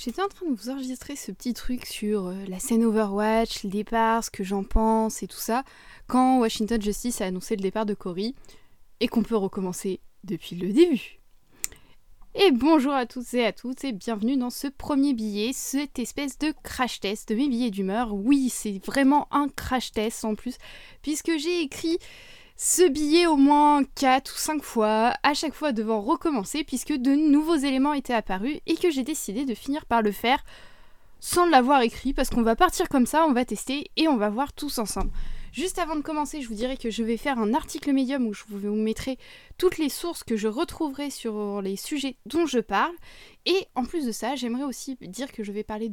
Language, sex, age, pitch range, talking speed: French, female, 20-39, 220-290 Hz, 210 wpm